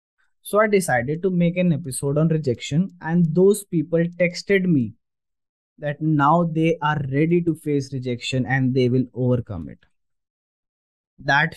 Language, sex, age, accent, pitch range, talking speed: English, male, 20-39, Indian, 130-165 Hz, 145 wpm